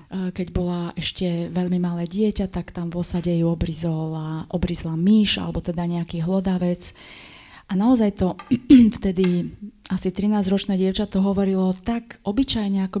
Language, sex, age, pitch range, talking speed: Slovak, female, 30-49, 180-210 Hz, 145 wpm